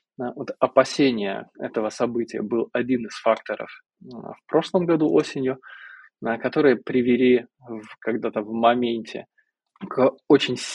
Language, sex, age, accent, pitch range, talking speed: Russian, male, 20-39, native, 115-155 Hz, 110 wpm